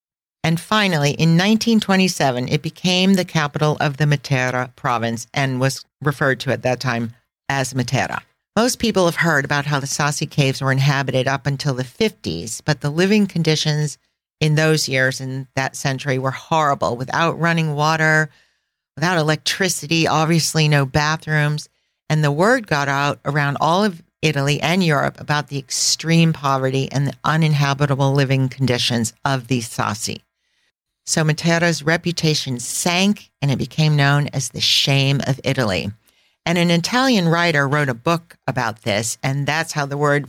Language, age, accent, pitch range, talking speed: English, 40-59, American, 135-160 Hz, 160 wpm